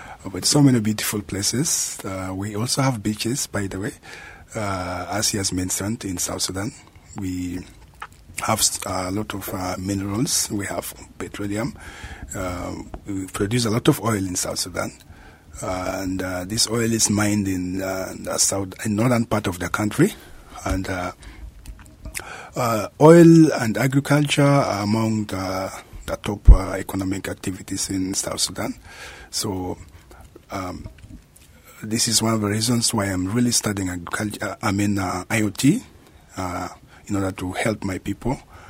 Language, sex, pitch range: Japanese, male, 95-110 Hz